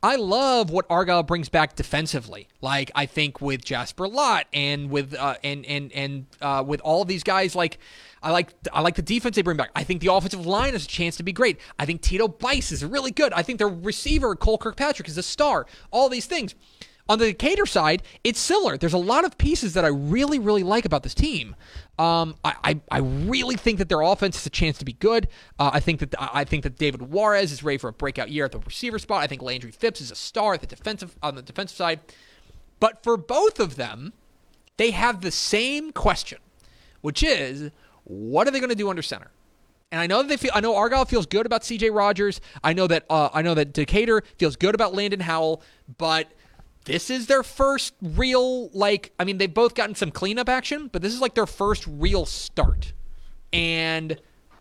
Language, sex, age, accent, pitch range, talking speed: English, male, 30-49, American, 150-230 Hz, 220 wpm